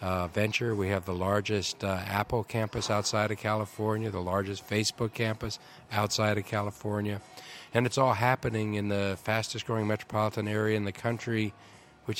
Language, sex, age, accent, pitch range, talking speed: English, male, 50-69, American, 100-115 Hz, 160 wpm